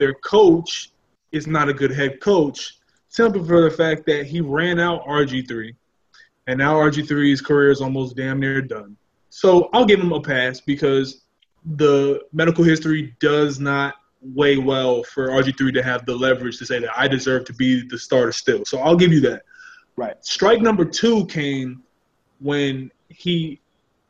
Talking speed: 170 wpm